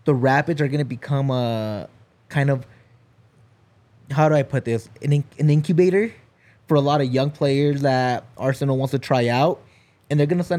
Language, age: English, 20-39